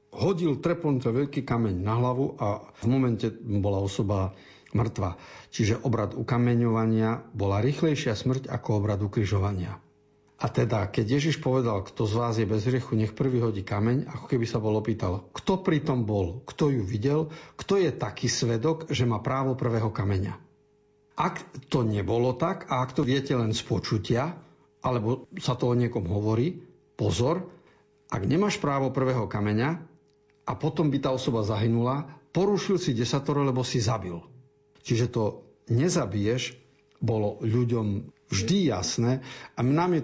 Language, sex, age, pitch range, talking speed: Slovak, male, 50-69, 110-140 Hz, 155 wpm